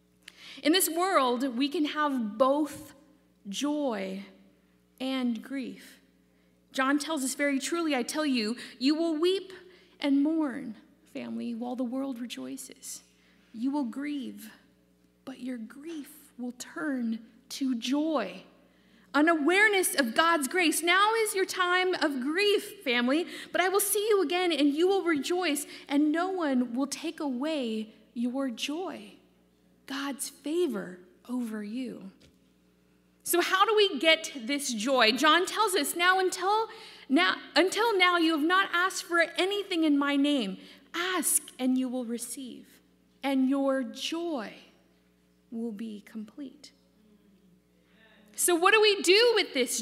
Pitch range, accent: 245-355 Hz, American